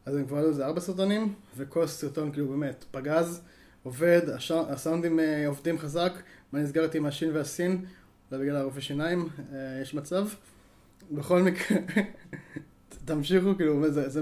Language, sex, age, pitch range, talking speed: Hebrew, male, 20-39, 140-170 Hz, 140 wpm